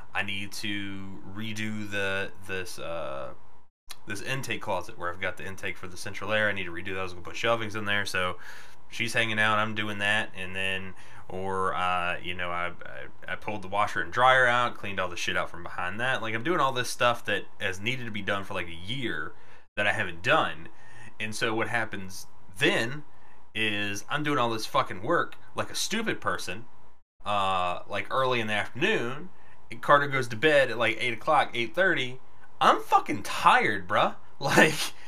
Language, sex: English, male